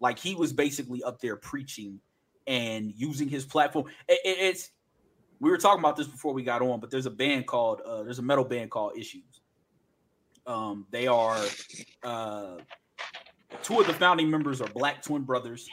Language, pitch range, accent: English, 110-145 Hz, American